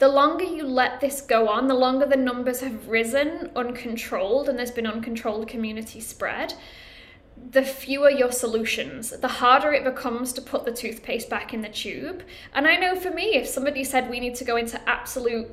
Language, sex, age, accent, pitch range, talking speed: English, female, 10-29, British, 235-280 Hz, 195 wpm